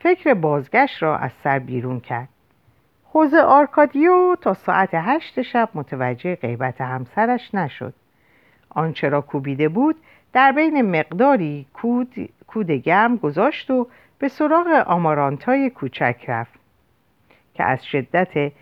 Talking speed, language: 115 wpm, Persian